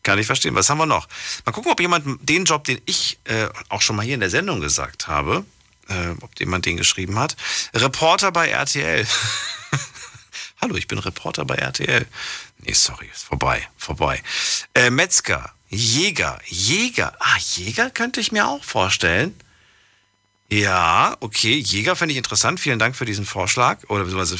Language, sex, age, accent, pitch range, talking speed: German, male, 40-59, German, 100-140 Hz, 170 wpm